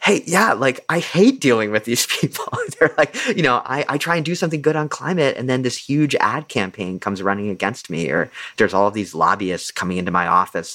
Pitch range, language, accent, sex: 85-105 Hz, English, American, male